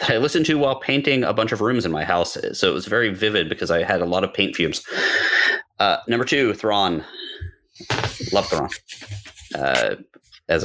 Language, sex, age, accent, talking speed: English, male, 30-49, American, 185 wpm